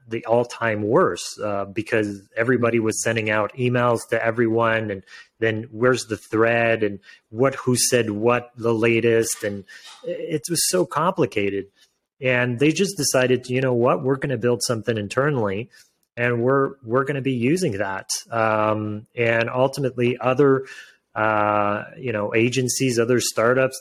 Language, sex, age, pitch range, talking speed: English, male, 30-49, 110-135 Hz, 155 wpm